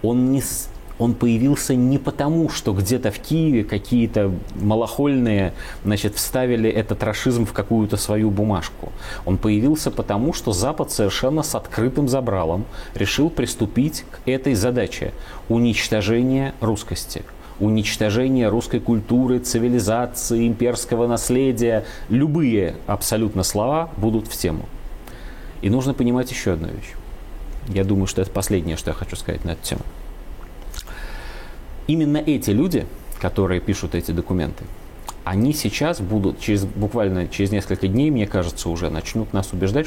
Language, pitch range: Russian, 95-120 Hz